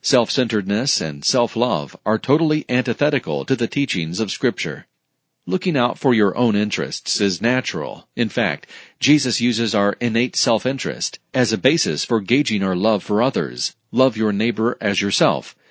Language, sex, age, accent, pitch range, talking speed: English, male, 40-59, American, 105-130 Hz, 155 wpm